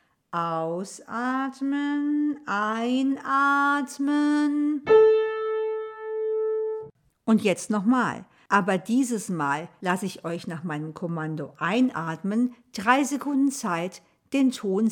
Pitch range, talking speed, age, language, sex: 195-300 Hz, 80 wpm, 50-69, German, female